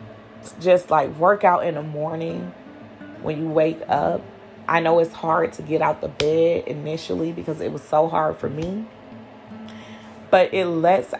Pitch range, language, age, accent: 150-180 Hz, English, 20-39, American